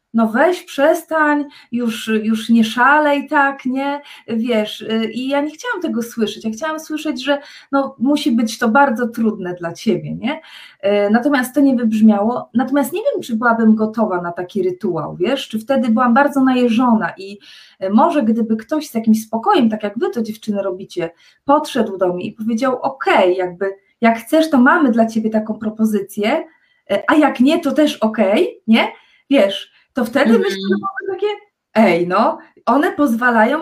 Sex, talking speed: female, 170 wpm